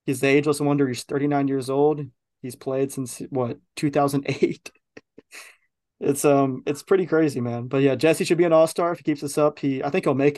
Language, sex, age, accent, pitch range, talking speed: English, male, 20-39, American, 135-150 Hz, 210 wpm